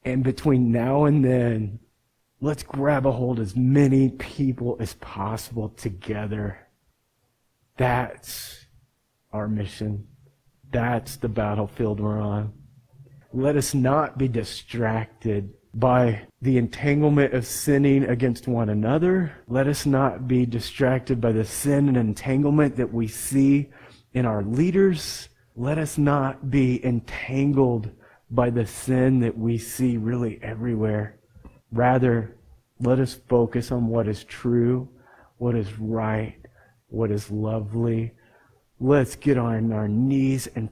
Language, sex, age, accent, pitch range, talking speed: English, male, 30-49, American, 115-130 Hz, 125 wpm